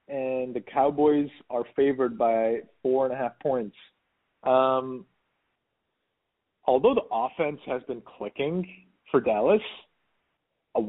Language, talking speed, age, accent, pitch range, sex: English, 115 wpm, 30-49, American, 105-135 Hz, male